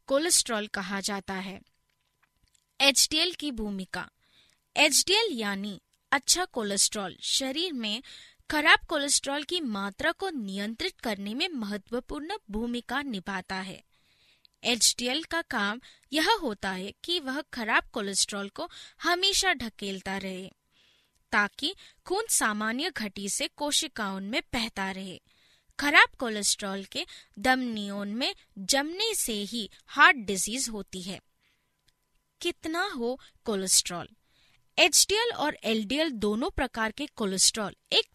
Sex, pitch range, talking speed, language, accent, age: female, 205-325 Hz, 110 wpm, Hindi, native, 20-39